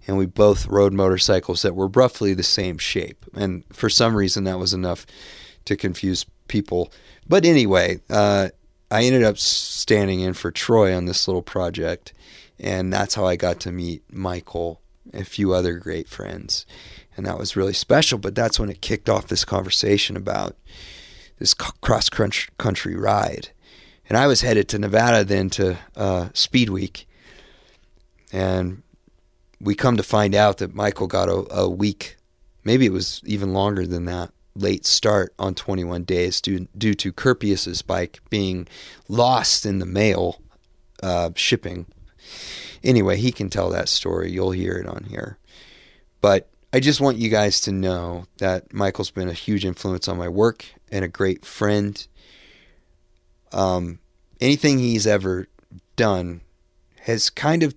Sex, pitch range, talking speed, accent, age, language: male, 90-105 Hz, 160 wpm, American, 30-49, English